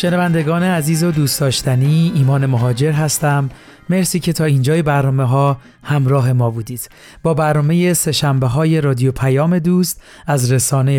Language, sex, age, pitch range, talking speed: Persian, male, 40-59, 135-160 Hz, 130 wpm